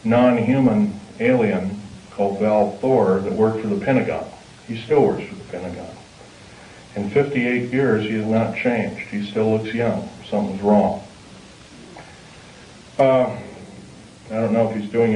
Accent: American